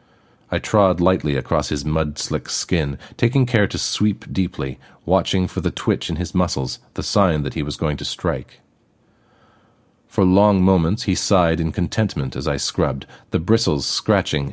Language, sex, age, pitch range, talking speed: English, male, 40-59, 75-95 Hz, 165 wpm